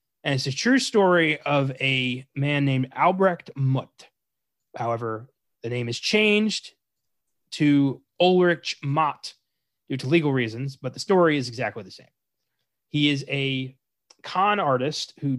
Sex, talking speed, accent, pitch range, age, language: male, 140 wpm, American, 125-160 Hz, 30-49, English